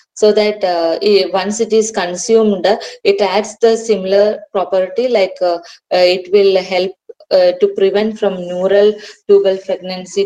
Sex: female